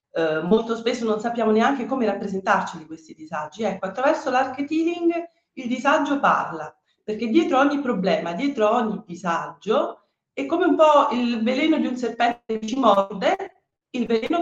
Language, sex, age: Italian, female, 40-59